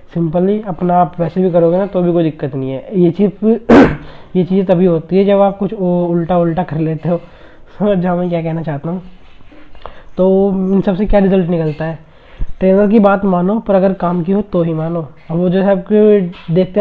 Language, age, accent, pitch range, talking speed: Hindi, 20-39, native, 170-190 Hz, 205 wpm